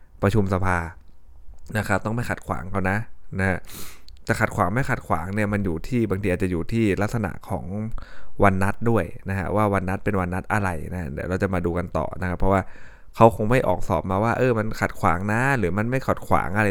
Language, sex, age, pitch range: Thai, male, 20-39, 90-110 Hz